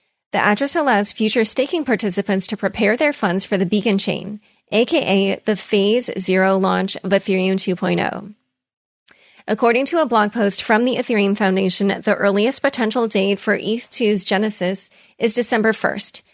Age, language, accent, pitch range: 30-49, English, American, 195-235 Hz